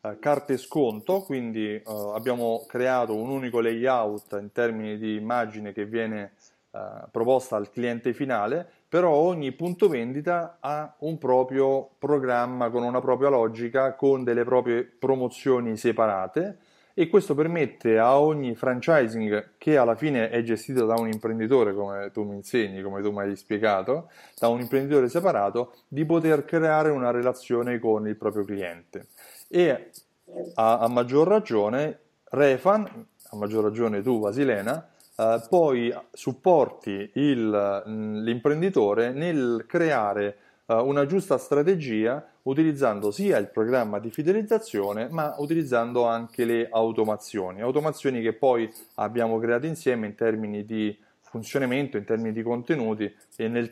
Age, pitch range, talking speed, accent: 30-49, 110-140 Hz, 130 wpm, native